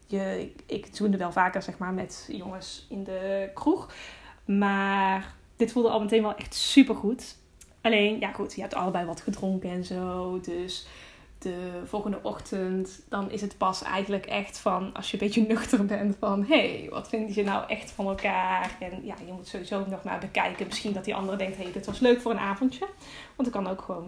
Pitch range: 195-235 Hz